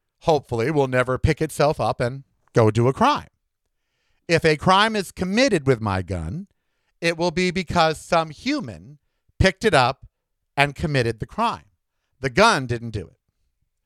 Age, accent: 50-69, American